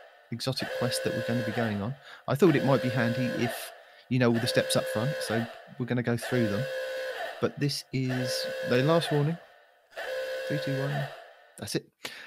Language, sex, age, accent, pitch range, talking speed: English, male, 30-49, British, 115-150 Hz, 200 wpm